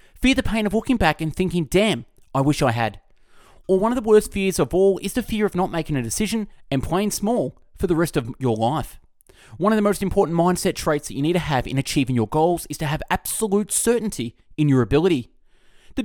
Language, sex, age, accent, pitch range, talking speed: English, male, 20-39, Australian, 130-190 Hz, 235 wpm